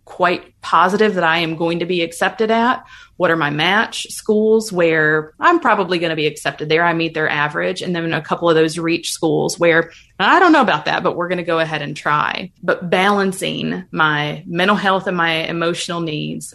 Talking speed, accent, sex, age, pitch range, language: 210 wpm, American, female, 20-39, 155-180 Hz, English